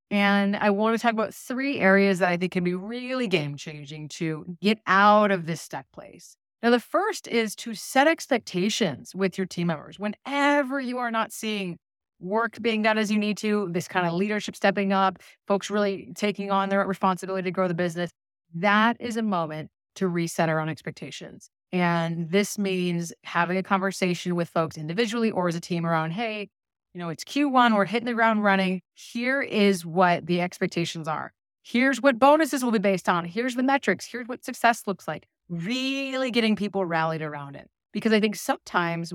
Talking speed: 190 wpm